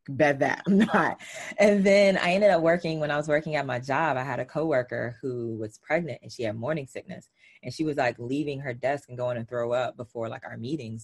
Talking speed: 245 wpm